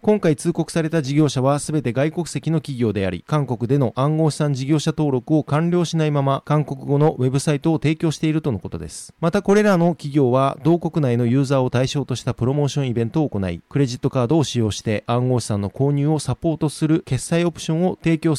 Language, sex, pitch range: Japanese, male, 125-160 Hz